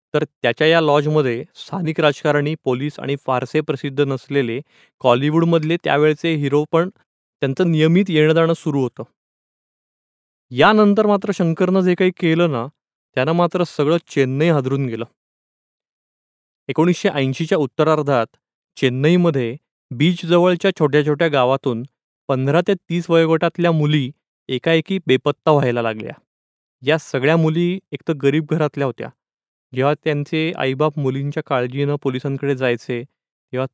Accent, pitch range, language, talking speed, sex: native, 130-165 Hz, Marathi, 115 wpm, male